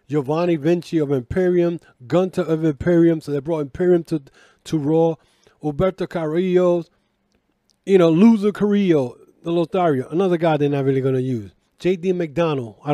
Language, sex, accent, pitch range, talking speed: English, male, American, 150-185 Hz, 155 wpm